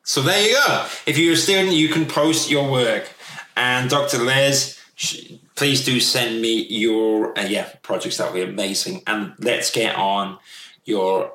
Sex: male